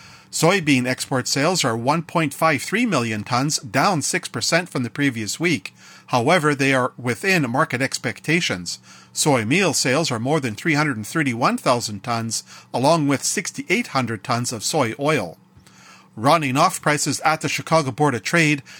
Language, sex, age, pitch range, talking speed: English, male, 40-59, 125-165 Hz, 135 wpm